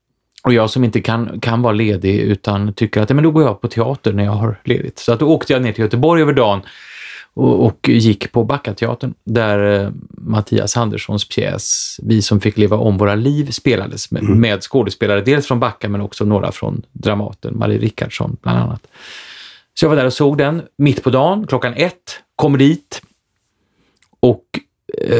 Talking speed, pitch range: 190 wpm, 105-135 Hz